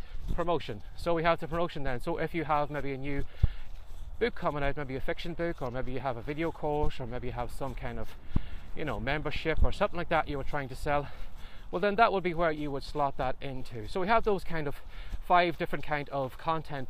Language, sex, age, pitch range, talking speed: English, male, 20-39, 135-170 Hz, 245 wpm